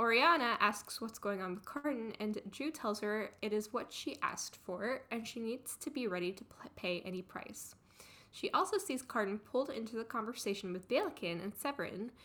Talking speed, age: 190 wpm, 10-29